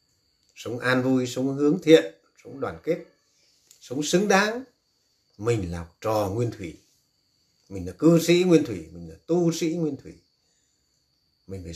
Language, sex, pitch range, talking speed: Vietnamese, male, 105-160 Hz, 160 wpm